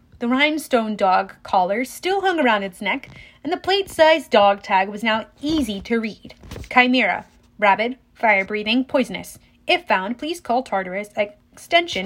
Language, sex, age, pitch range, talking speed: English, female, 30-49, 215-310 Hz, 145 wpm